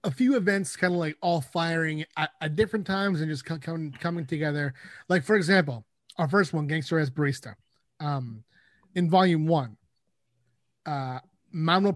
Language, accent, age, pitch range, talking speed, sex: English, American, 30-49, 140-170 Hz, 150 wpm, male